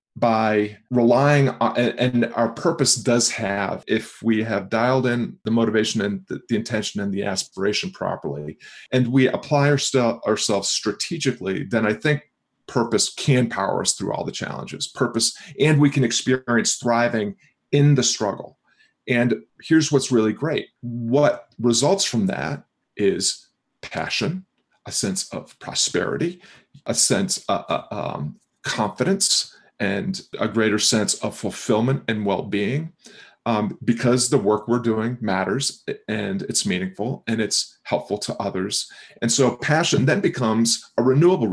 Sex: male